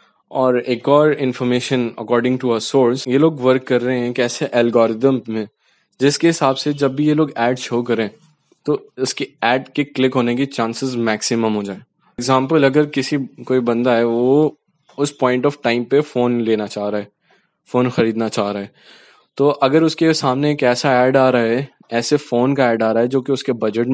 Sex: male